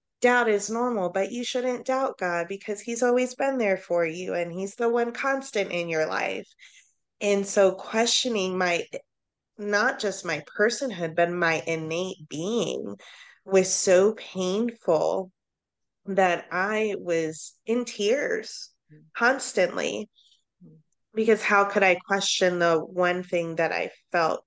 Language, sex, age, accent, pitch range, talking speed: English, female, 20-39, American, 165-210 Hz, 135 wpm